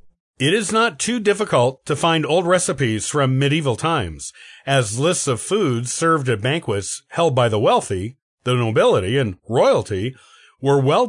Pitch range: 120-180 Hz